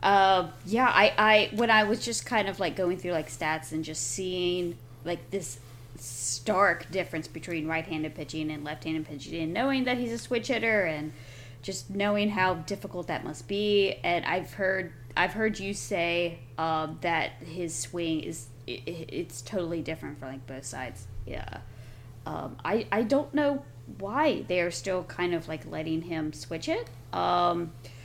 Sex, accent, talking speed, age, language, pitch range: female, American, 175 wpm, 20-39, English, 130-195 Hz